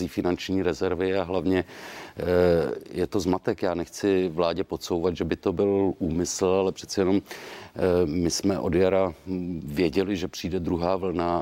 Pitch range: 85-95 Hz